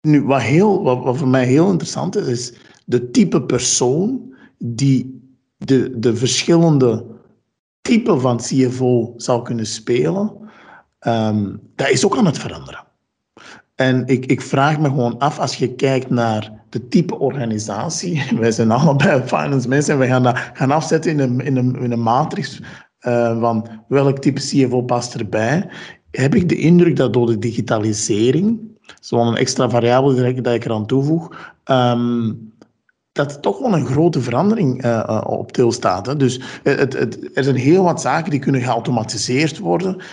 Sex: male